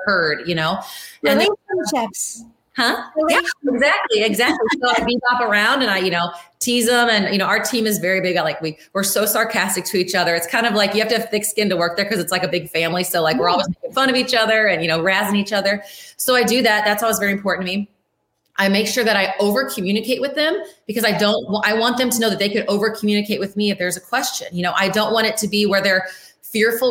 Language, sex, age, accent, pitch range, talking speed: English, female, 30-49, American, 180-225 Hz, 270 wpm